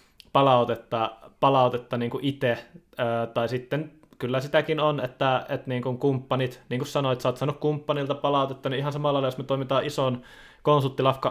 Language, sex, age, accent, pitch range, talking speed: Finnish, male, 20-39, native, 125-140 Hz, 165 wpm